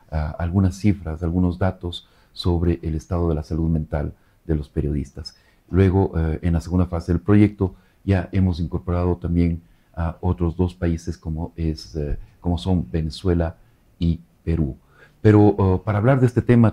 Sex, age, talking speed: male, 40-59, 170 wpm